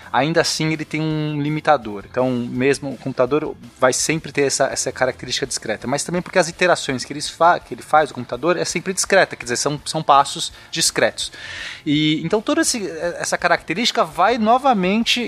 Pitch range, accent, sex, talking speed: 130-175 Hz, Brazilian, male, 185 wpm